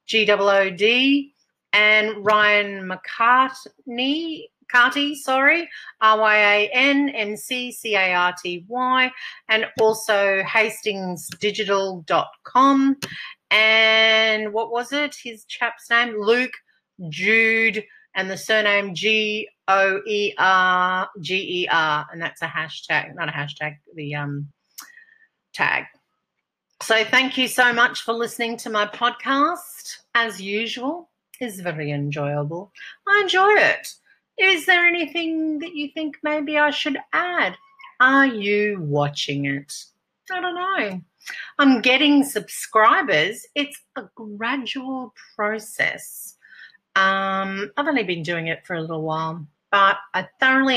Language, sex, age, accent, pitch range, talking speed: English, female, 40-59, Australian, 190-265 Hz, 125 wpm